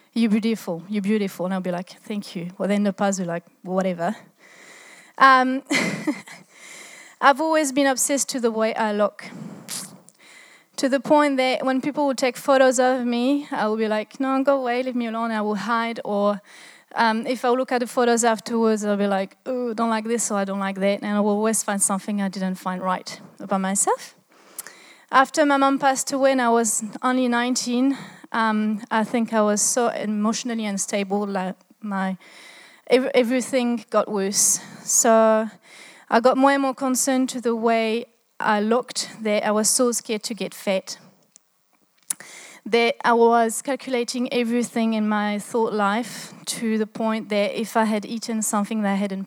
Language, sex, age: English, female, 30-49